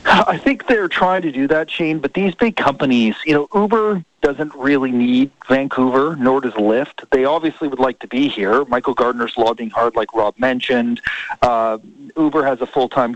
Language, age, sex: English, 40-59, male